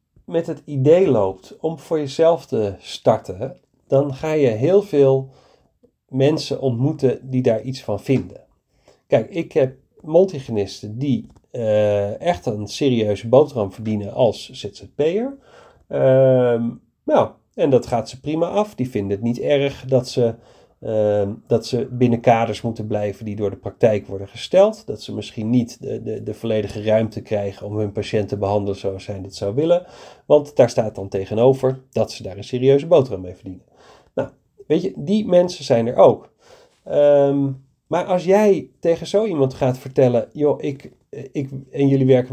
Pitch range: 110-145 Hz